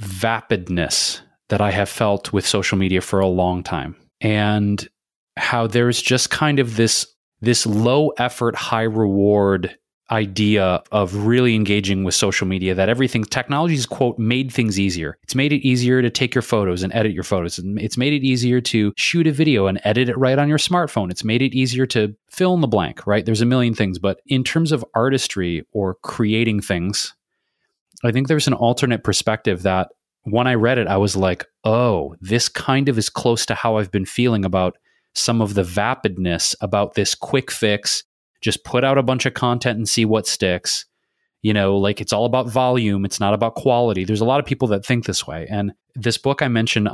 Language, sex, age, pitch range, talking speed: English, male, 30-49, 100-125 Hz, 200 wpm